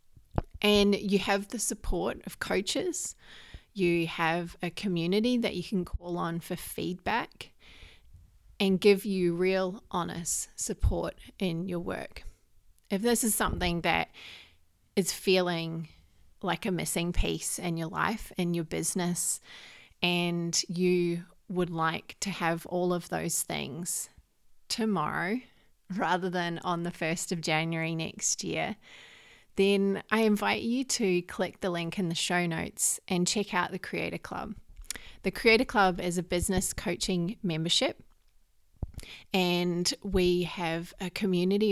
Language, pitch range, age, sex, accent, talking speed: English, 165-200 Hz, 30-49, female, Australian, 135 wpm